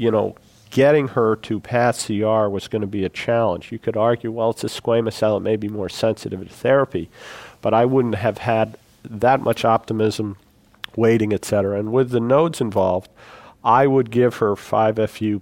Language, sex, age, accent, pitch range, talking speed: English, male, 50-69, American, 105-125 Hz, 190 wpm